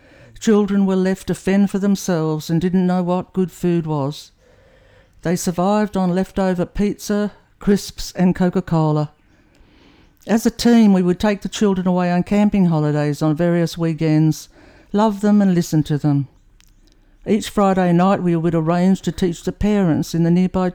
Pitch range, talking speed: 155-190 Hz, 160 wpm